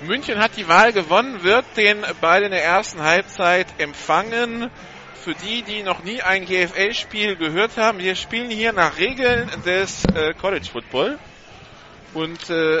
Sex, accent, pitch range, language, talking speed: male, German, 150-195 Hz, German, 145 wpm